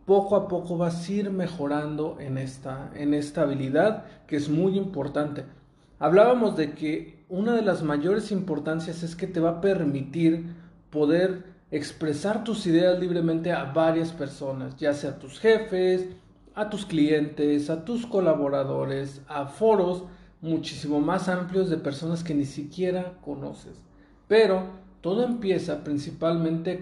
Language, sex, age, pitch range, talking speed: Spanish, male, 40-59, 150-190 Hz, 145 wpm